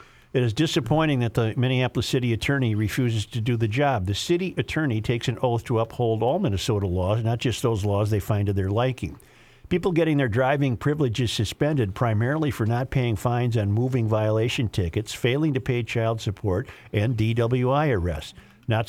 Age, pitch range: 50-69, 110-130 Hz